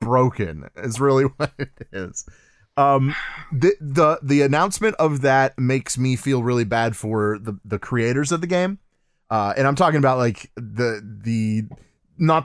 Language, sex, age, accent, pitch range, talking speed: English, male, 30-49, American, 115-150 Hz, 165 wpm